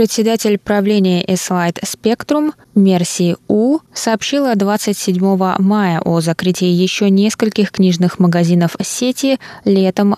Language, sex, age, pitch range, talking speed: Russian, female, 20-39, 170-200 Hz, 100 wpm